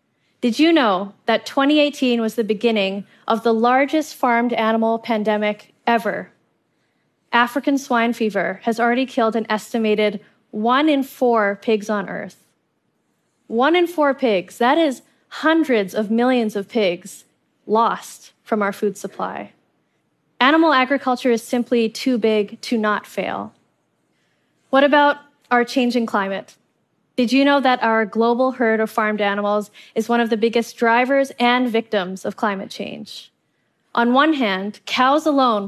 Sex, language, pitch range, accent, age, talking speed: female, English, 215-255 Hz, American, 20-39, 145 wpm